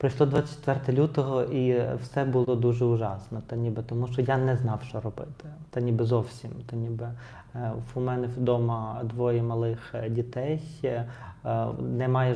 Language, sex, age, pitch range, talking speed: Ukrainian, male, 30-49, 120-135 Hz, 140 wpm